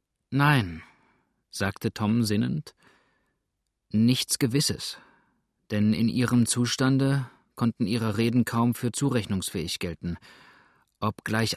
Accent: German